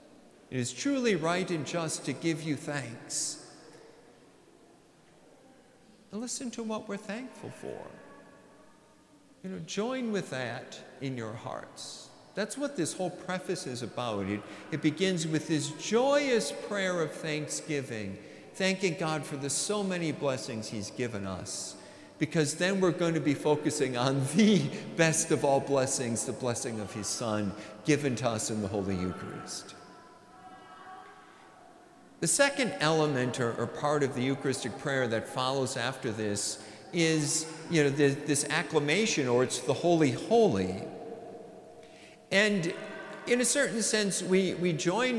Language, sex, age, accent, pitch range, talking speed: English, male, 50-69, American, 135-205 Hz, 140 wpm